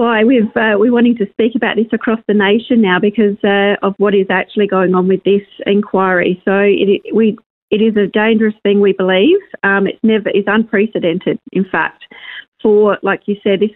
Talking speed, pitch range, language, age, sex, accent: 200 wpm, 200-225 Hz, English, 40-59, female, Australian